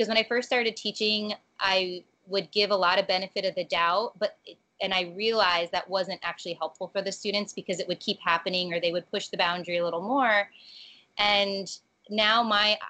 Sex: female